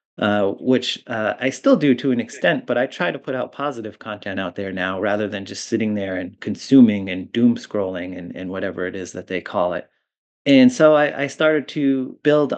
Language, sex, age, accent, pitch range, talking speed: English, male, 30-49, American, 105-140 Hz, 220 wpm